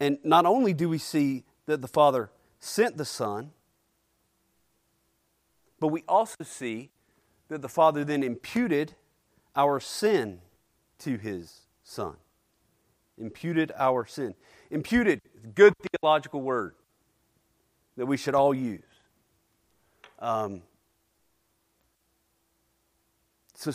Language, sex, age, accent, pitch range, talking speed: English, male, 40-59, American, 125-170 Hz, 100 wpm